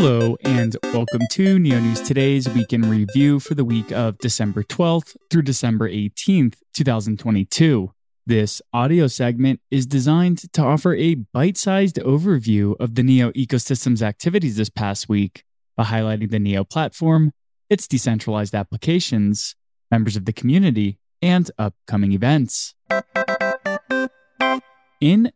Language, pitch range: English, 110-160 Hz